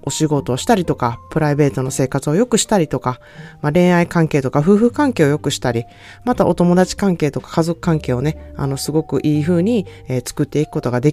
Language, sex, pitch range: Japanese, female, 140-200 Hz